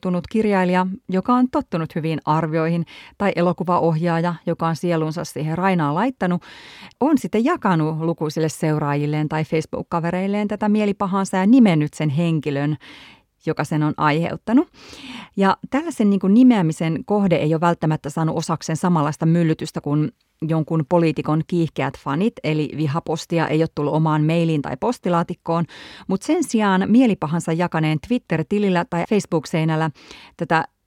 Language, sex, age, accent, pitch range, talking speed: Finnish, female, 30-49, native, 160-195 Hz, 130 wpm